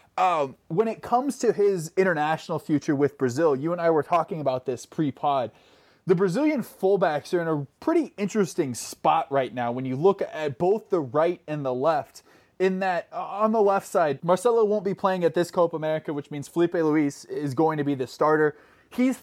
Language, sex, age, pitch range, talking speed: English, male, 20-39, 145-195 Hz, 205 wpm